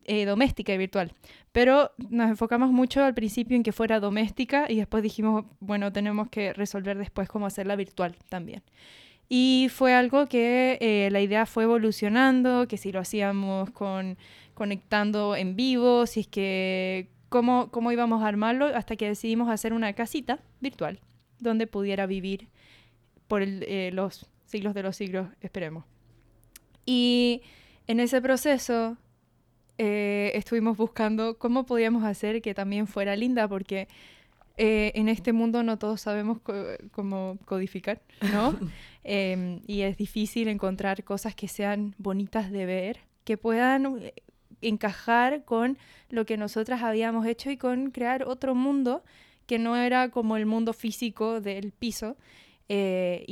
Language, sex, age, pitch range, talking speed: Spanish, female, 10-29, 200-235 Hz, 150 wpm